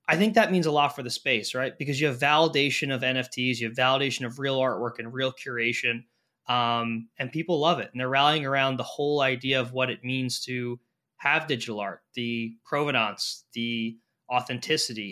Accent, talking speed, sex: American, 195 wpm, male